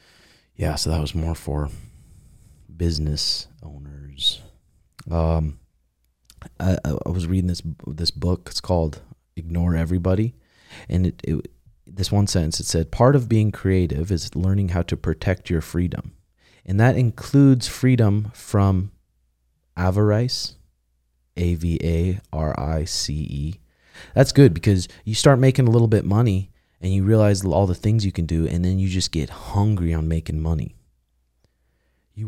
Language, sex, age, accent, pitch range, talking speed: English, male, 30-49, American, 80-100 Hz, 140 wpm